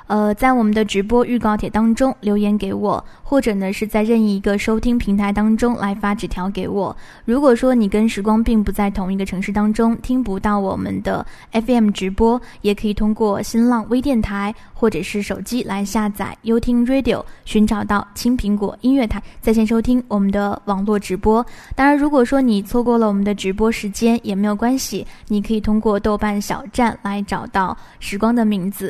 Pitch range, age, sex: 205-240 Hz, 10-29, female